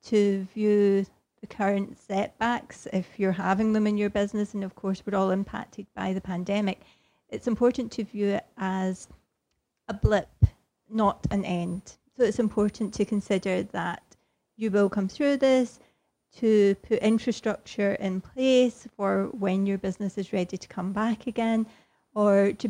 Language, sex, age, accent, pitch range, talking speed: English, female, 30-49, British, 195-220 Hz, 160 wpm